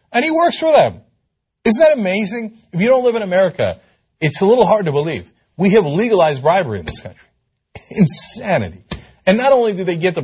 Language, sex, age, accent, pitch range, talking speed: English, male, 40-59, American, 120-185 Hz, 205 wpm